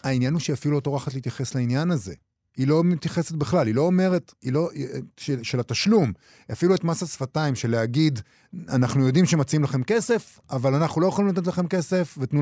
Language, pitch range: Hebrew, 125-175 Hz